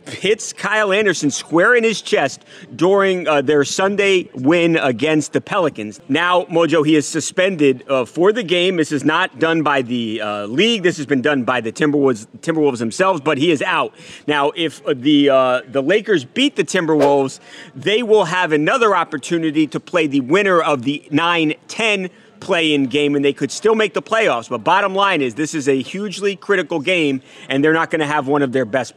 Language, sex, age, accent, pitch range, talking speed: English, male, 30-49, American, 140-185 Hz, 195 wpm